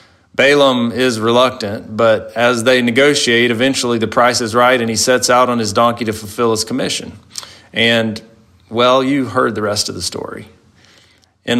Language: English